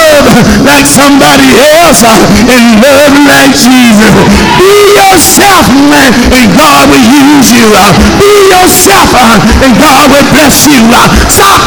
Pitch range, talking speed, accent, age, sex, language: 245-290 Hz, 120 wpm, American, 60-79, male, English